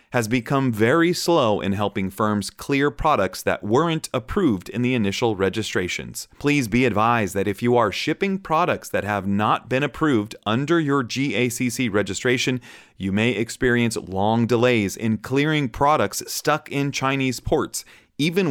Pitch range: 105-140 Hz